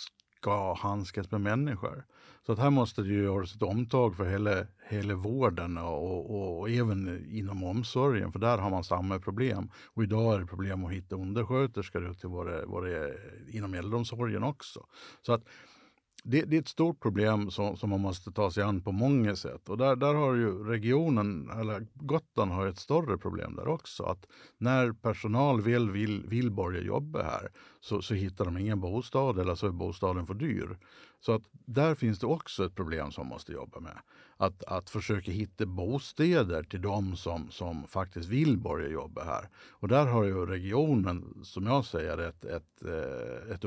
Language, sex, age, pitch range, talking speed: Swedish, male, 50-69, 95-120 Hz, 180 wpm